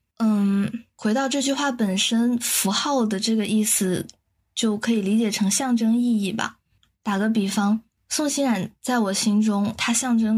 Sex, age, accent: female, 20-39, native